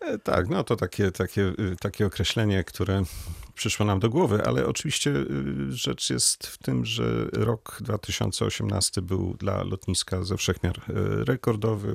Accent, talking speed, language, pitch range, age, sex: native, 135 wpm, Polish, 95-115 Hz, 40-59, male